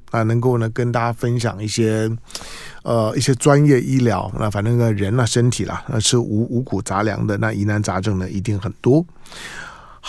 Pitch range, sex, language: 110-145 Hz, male, Chinese